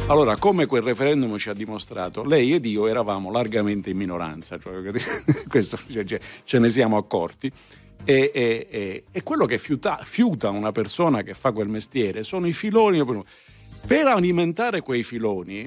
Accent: native